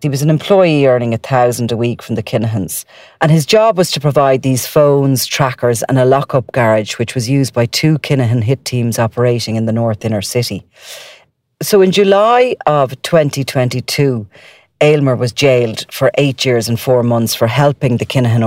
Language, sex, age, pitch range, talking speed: English, female, 40-59, 115-135 Hz, 185 wpm